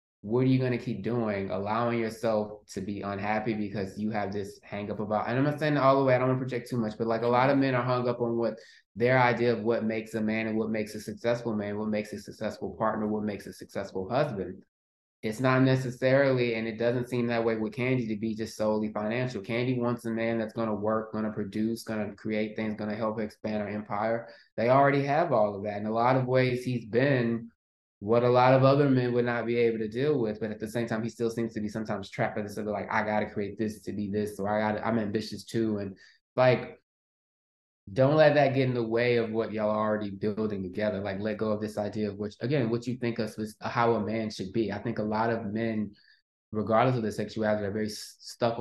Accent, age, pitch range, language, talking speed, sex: American, 20-39, 105-120 Hz, English, 255 wpm, male